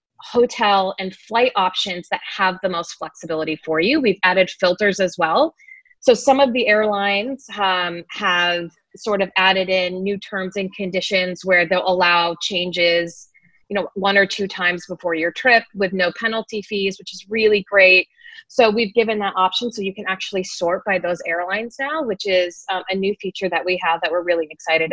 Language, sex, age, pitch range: English, female, 30-49, 175-225 Hz